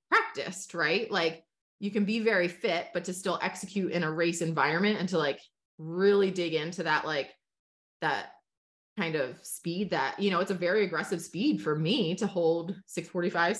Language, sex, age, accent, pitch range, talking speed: English, female, 20-39, American, 155-195 Hz, 180 wpm